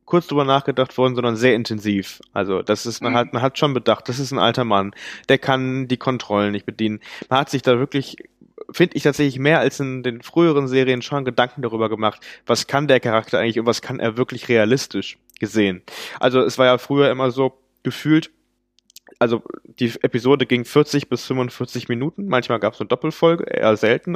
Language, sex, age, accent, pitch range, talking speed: German, male, 20-39, German, 110-135 Hz, 200 wpm